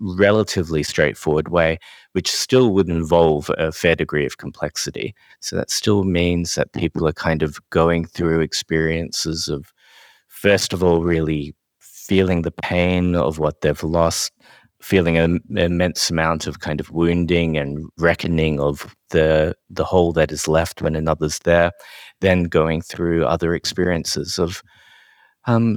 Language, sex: English, male